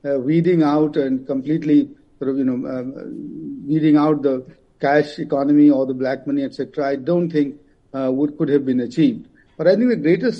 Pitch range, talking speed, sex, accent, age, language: 140-170 Hz, 195 wpm, male, Indian, 50-69, English